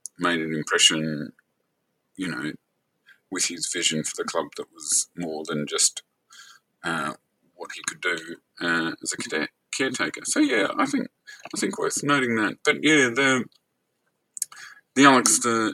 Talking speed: 155 wpm